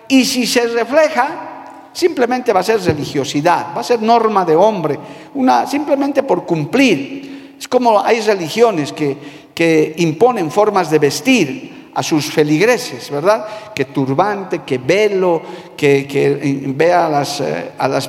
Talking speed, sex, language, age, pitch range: 145 wpm, male, Spanish, 50-69, 165-250 Hz